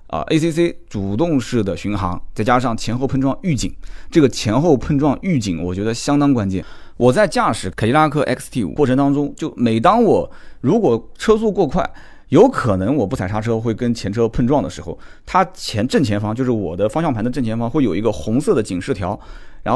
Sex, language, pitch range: male, Chinese, 100-150 Hz